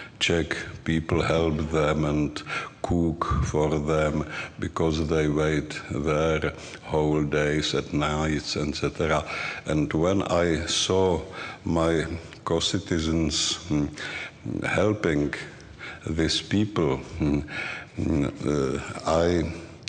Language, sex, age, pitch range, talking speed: English, male, 60-79, 75-85 Hz, 80 wpm